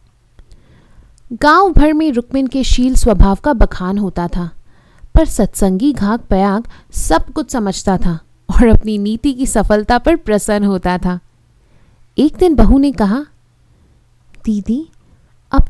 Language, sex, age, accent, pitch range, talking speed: Hindi, female, 30-49, native, 200-305 Hz, 140 wpm